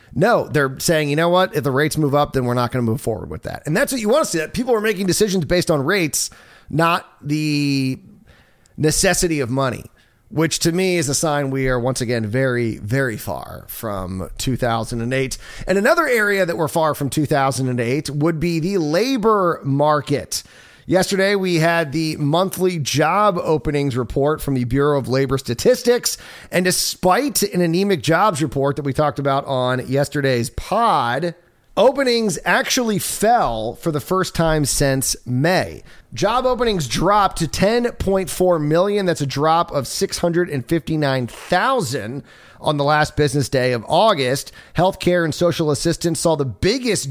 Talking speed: 175 wpm